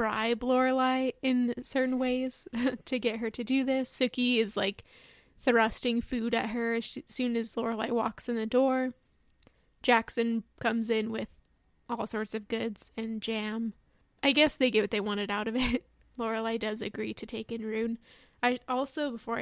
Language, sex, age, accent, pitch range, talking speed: English, female, 20-39, American, 225-250 Hz, 175 wpm